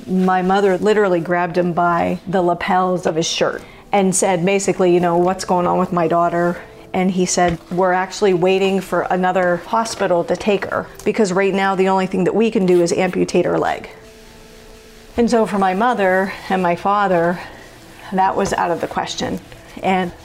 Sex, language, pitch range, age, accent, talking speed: female, English, 175-195 Hz, 40-59, American, 185 wpm